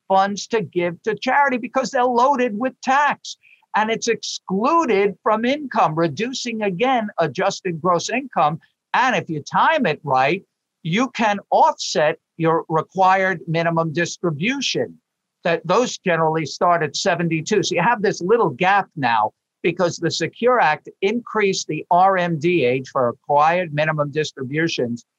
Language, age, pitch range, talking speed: English, 50-69, 160-220 Hz, 140 wpm